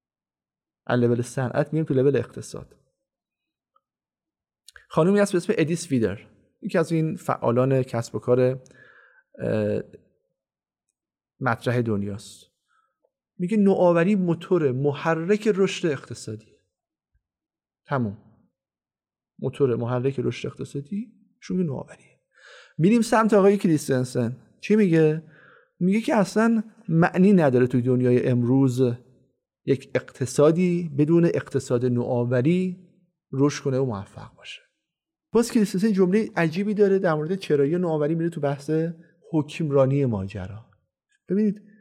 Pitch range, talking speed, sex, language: 125-180 Hz, 105 wpm, male, Persian